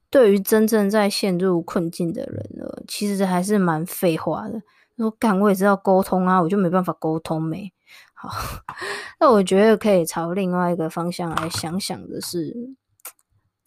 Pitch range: 170-215 Hz